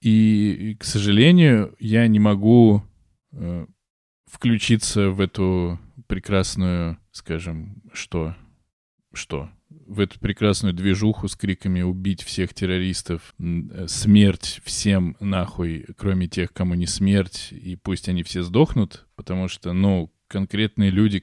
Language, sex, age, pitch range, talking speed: Russian, male, 20-39, 90-105 Hz, 115 wpm